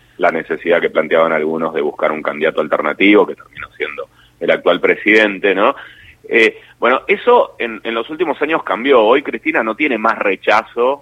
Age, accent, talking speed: 30-49, Argentinian, 175 wpm